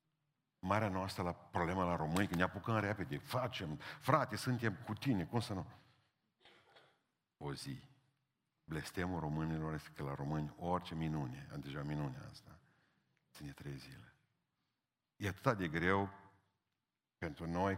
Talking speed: 140 wpm